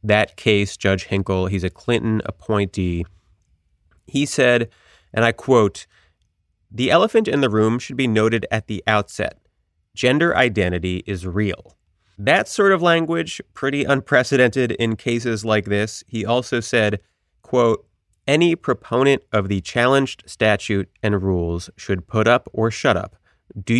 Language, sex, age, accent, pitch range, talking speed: English, male, 30-49, American, 95-120 Hz, 145 wpm